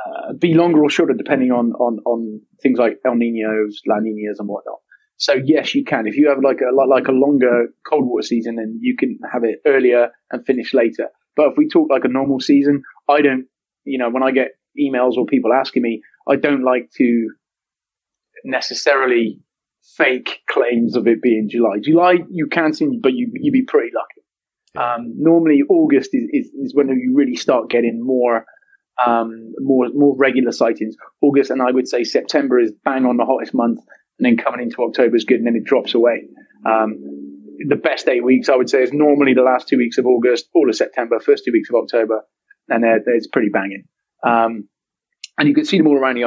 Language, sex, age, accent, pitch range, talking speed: English, male, 30-49, British, 115-165 Hz, 205 wpm